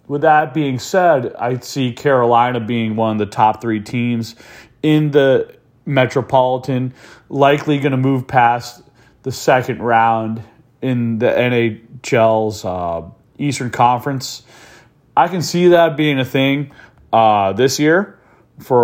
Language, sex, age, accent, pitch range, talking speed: English, male, 30-49, American, 120-145 Hz, 135 wpm